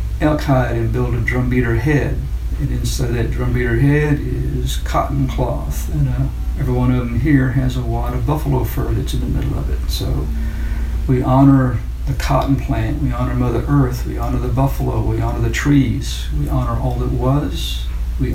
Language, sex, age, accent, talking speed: English, male, 60-79, American, 200 wpm